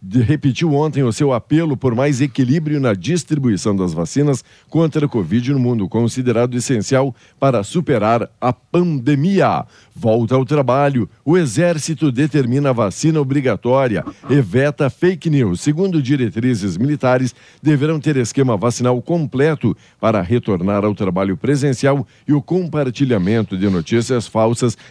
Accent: Brazilian